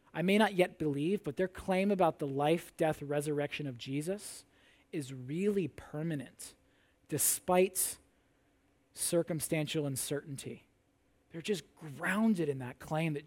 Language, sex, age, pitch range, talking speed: English, male, 20-39, 140-175 Hz, 125 wpm